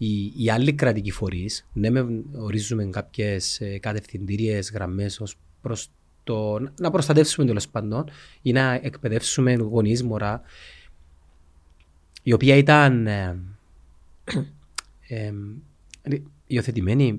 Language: Greek